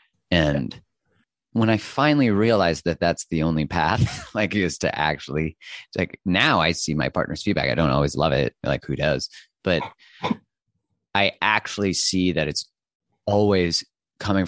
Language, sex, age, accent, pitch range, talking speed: English, male, 30-49, American, 85-105 Hz, 155 wpm